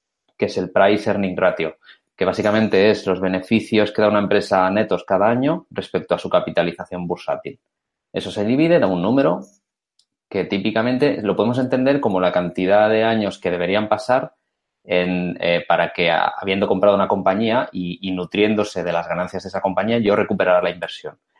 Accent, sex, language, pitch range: Spanish, male, Spanish, 95-110 Hz